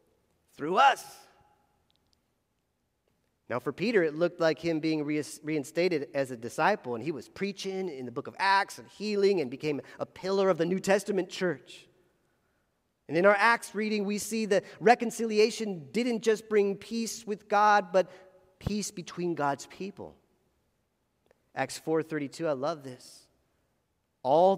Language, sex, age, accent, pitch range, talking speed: English, male, 40-59, American, 140-190 Hz, 145 wpm